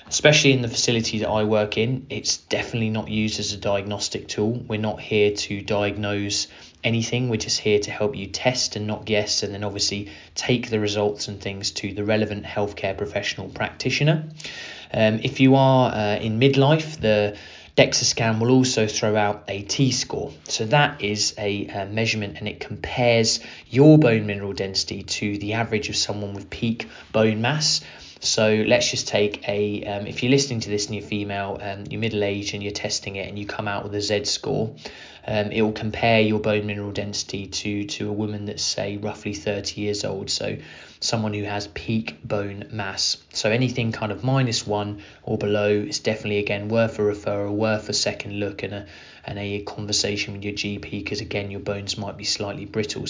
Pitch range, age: 100-110 Hz, 20-39